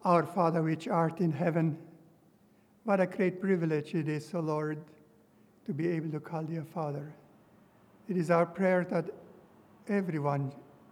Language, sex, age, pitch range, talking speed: English, male, 60-79, 160-195 Hz, 160 wpm